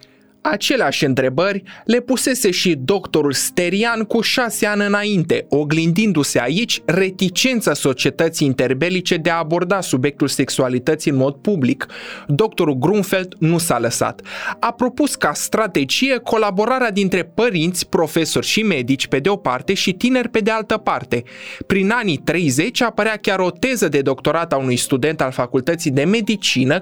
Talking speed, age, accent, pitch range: 145 wpm, 20-39, native, 140-210 Hz